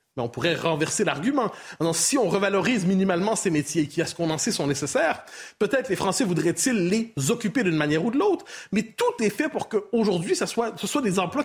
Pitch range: 160-225 Hz